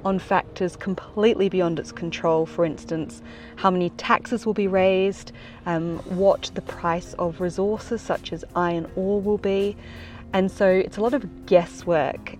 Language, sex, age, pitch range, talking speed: English, female, 30-49, 170-205 Hz, 160 wpm